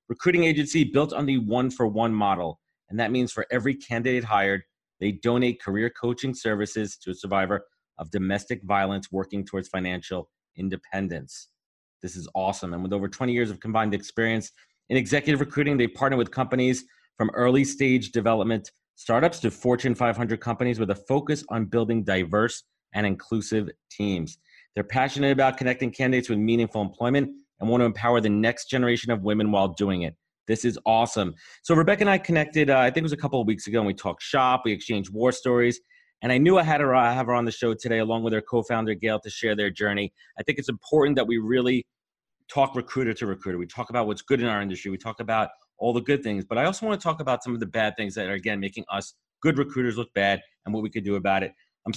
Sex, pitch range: male, 105-130 Hz